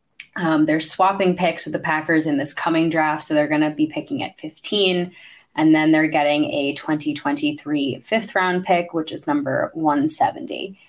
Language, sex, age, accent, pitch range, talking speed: English, female, 20-39, American, 155-210 Hz, 175 wpm